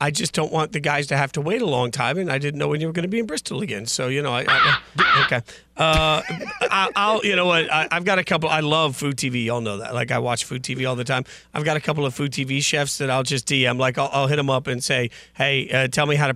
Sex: male